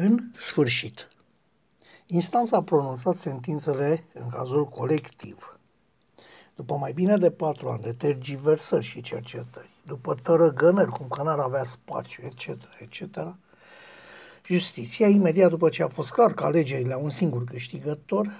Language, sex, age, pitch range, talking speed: Romanian, male, 60-79, 155-205 Hz, 135 wpm